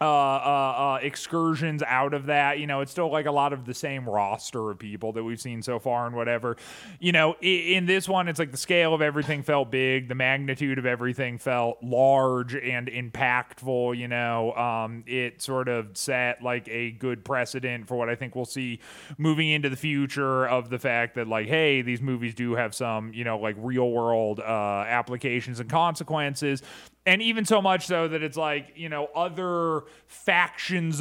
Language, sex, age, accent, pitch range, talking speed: English, male, 20-39, American, 120-145 Hz, 195 wpm